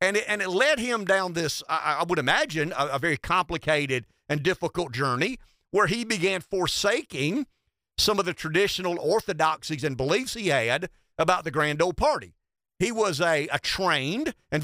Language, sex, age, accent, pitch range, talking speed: English, male, 50-69, American, 145-200 Hz, 170 wpm